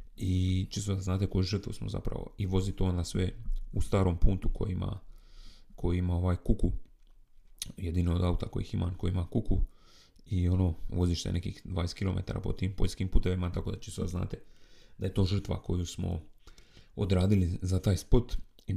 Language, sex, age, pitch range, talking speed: Croatian, male, 30-49, 90-105 Hz, 180 wpm